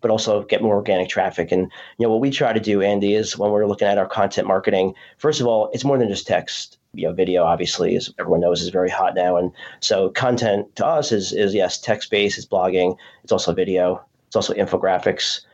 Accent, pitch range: American, 100-125 Hz